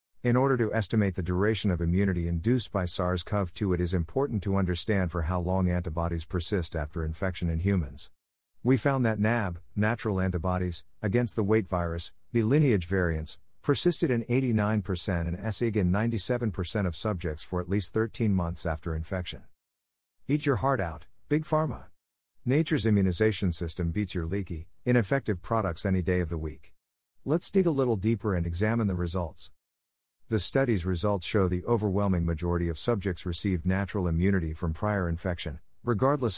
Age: 50-69